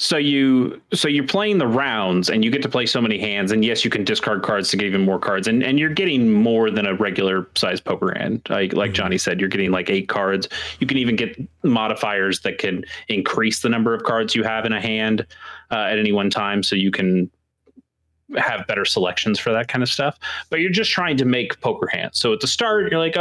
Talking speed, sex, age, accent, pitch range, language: 240 wpm, male, 30-49, American, 110-155 Hz, English